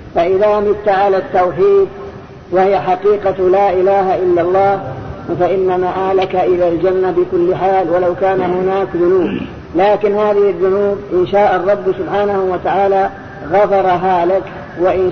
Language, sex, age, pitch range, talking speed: Arabic, female, 50-69, 180-200 Hz, 125 wpm